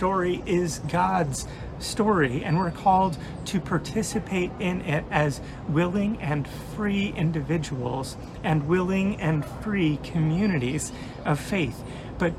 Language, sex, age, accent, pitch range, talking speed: English, male, 30-49, American, 140-175 Hz, 115 wpm